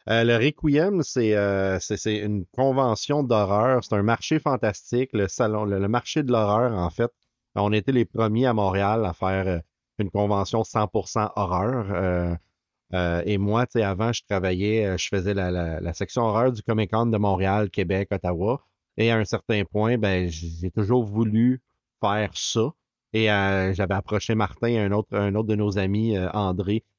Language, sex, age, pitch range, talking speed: French, male, 30-49, 100-120 Hz, 180 wpm